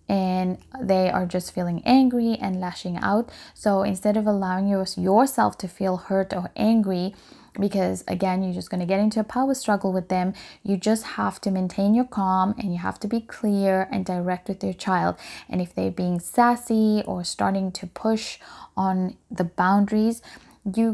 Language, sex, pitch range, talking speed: English, female, 185-215 Hz, 180 wpm